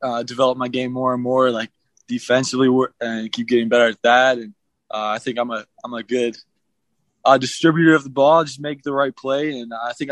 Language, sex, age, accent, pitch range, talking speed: English, male, 20-39, American, 115-135 Hz, 220 wpm